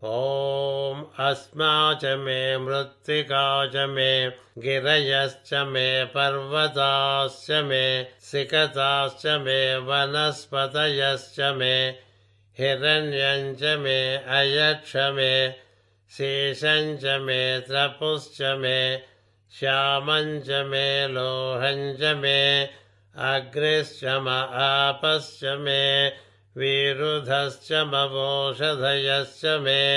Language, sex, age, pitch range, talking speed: Telugu, male, 60-79, 130-140 Hz, 45 wpm